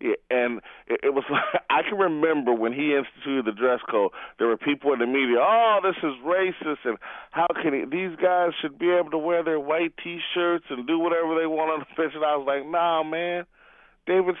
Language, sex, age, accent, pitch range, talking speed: English, male, 40-59, American, 115-165 Hz, 220 wpm